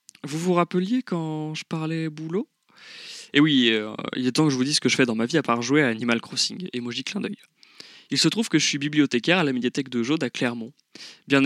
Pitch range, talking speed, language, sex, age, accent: 125-160 Hz, 250 wpm, French, male, 20-39, French